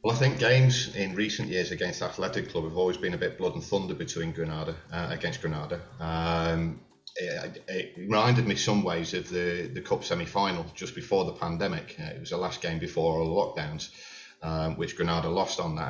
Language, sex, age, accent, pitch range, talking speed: English, male, 40-59, British, 80-85 Hz, 210 wpm